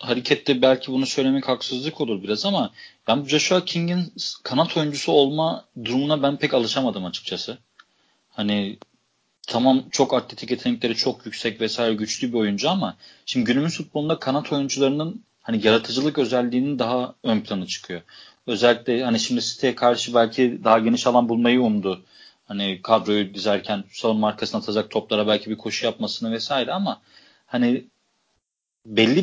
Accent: native